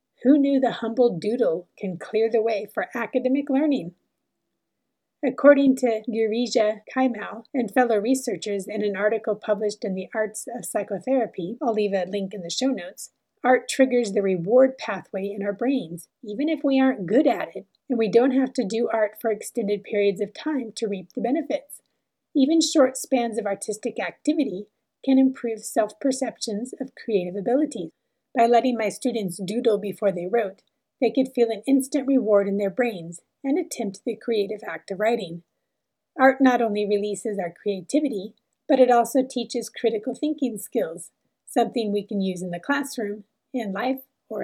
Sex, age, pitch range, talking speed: female, 30-49, 205-260 Hz, 170 wpm